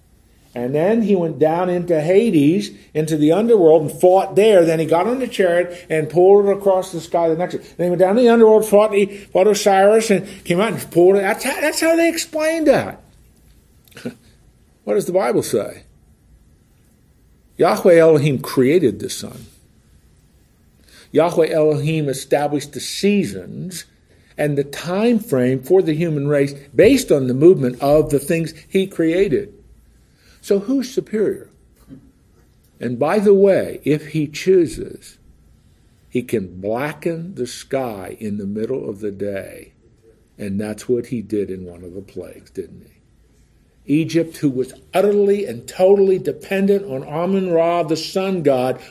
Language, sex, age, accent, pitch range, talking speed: English, male, 50-69, American, 135-195 Hz, 160 wpm